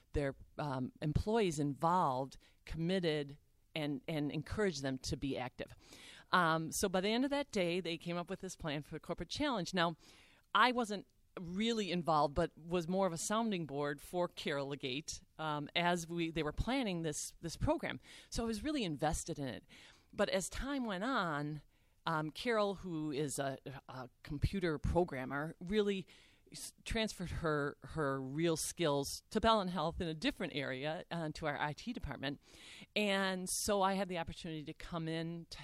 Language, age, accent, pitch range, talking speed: English, 40-59, American, 145-195 Hz, 170 wpm